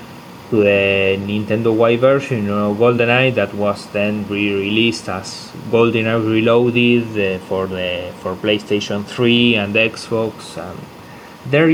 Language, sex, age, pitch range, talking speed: English, male, 20-39, 105-125 Hz, 130 wpm